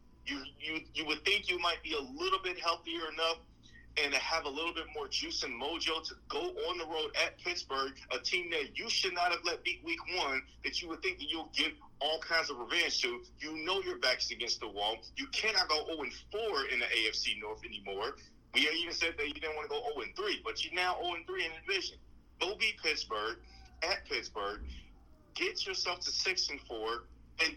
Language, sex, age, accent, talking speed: English, male, 40-59, American, 210 wpm